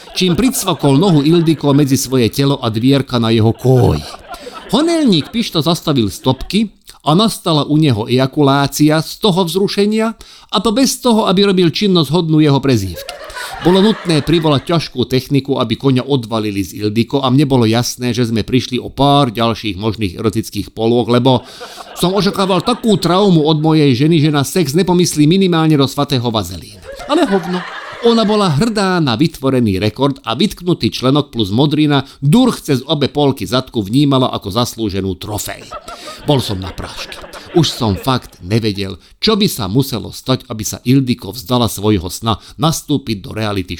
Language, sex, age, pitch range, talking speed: Slovak, male, 50-69, 110-170 Hz, 160 wpm